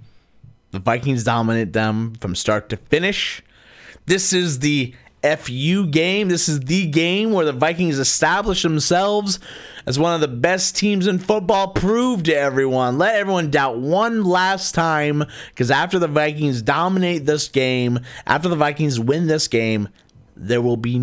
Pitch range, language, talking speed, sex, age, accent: 120-175 Hz, English, 155 wpm, male, 30-49, American